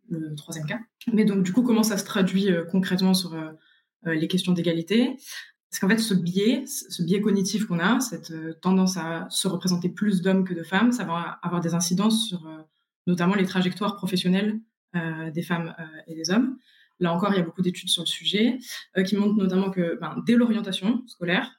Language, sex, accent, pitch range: French, female, French, 175-210 Hz